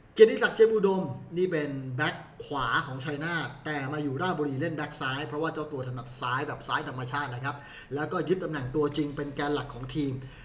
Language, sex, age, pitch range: Thai, male, 20-39, 135-170 Hz